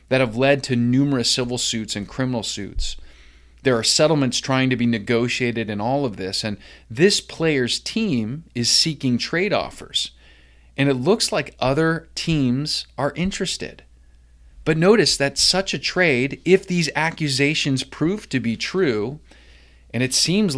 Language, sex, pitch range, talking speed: English, male, 110-145 Hz, 155 wpm